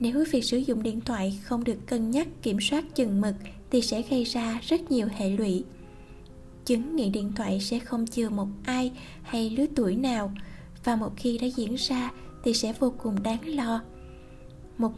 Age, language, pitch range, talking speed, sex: 10-29, Vietnamese, 210-255 Hz, 190 wpm, female